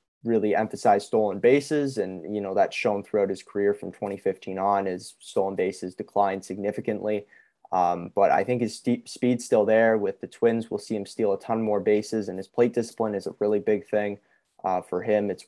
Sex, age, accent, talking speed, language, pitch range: male, 20-39, American, 200 wpm, English, 100-115 Hz